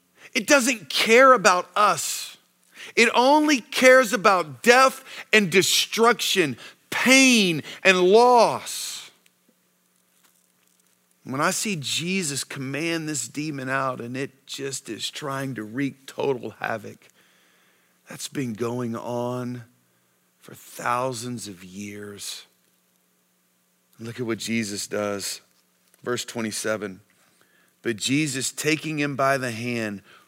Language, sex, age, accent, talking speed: English, male, 40-59, American, 105 wpm